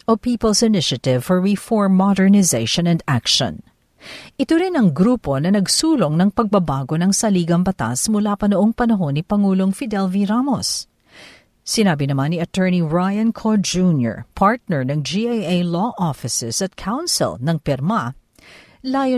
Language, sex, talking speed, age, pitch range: Filipino, female, 140 wpm, 50-69, 155-225 Hz